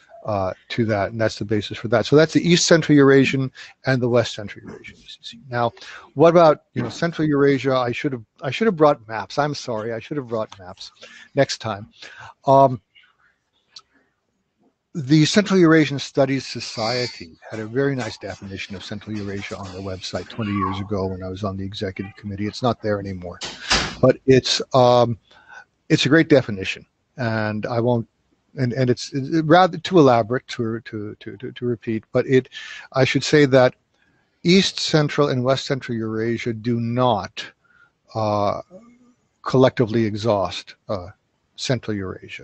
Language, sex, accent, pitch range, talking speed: English, male, American, 110-140 Hz, 165 wpm